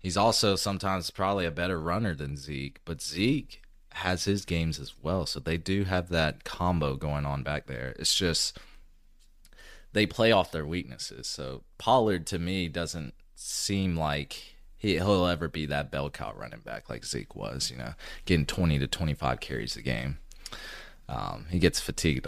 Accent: American